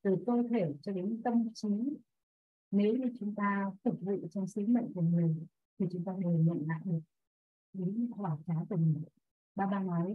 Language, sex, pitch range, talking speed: Vietnamese, female, 175-225 Hz, 200 wpm